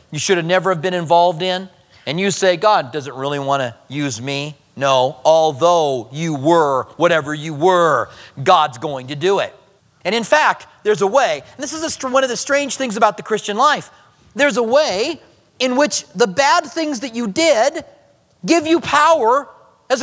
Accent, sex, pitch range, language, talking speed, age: American, male, 175-265 Hz, English, 190 wpm, 40-59